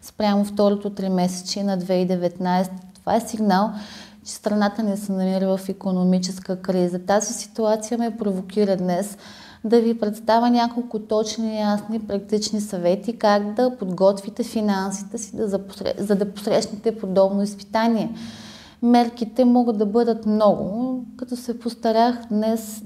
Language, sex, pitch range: Bulgarian, female, 195-230 Hz